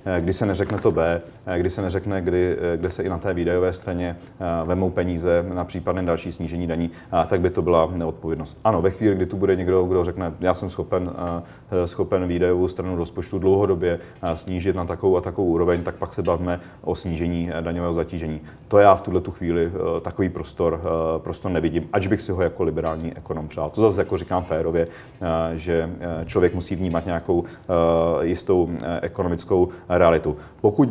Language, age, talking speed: Czech, 30-49, 175 wpm